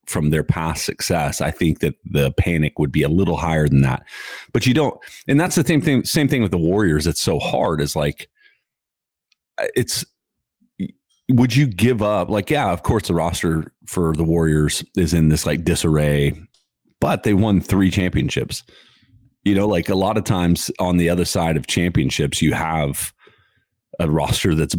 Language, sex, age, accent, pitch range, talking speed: English, male, 30-49, American, 80-100 Hz, 185 wpm